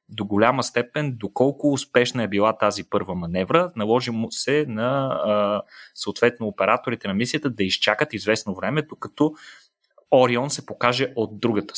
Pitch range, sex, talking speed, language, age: 105-140 Hz, male, 140 wpm, Bulgarian, 30-49